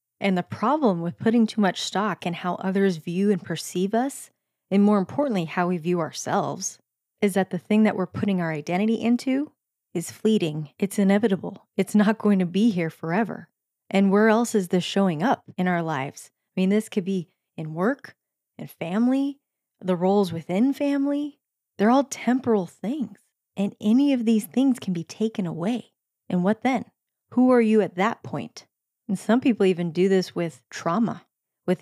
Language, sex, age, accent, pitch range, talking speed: English, female, 20-39, American, 175-220 Hz, 185 wpm